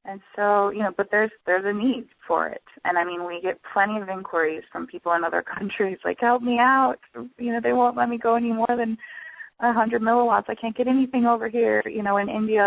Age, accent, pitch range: 20-39, American, 170-205 Hz